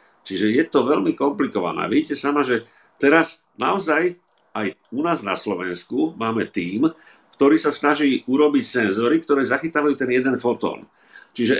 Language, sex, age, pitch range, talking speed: Slovak, male, 50-69, 120-150 Hz, 145 wpm